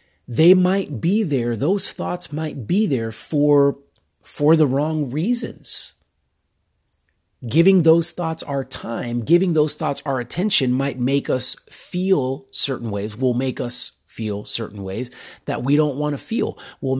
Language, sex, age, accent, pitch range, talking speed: English, male, 30-49, American, 120-165 Hz, 150 wpm